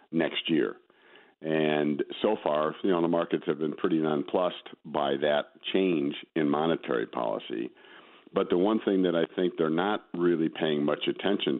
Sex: male